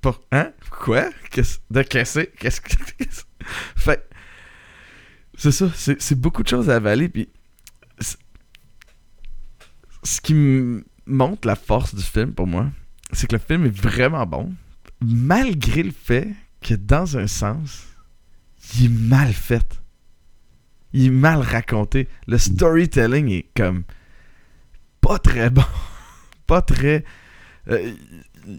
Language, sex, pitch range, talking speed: French, male, 105-135 Hz, 125 wpm